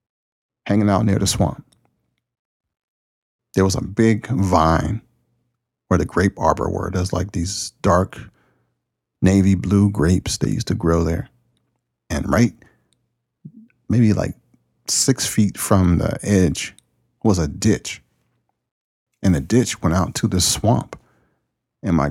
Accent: American